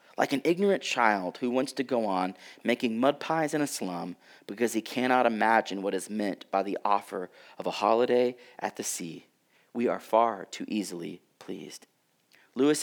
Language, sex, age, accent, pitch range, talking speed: English, male, 40-59, American, 145-215 Hz, 180 wpm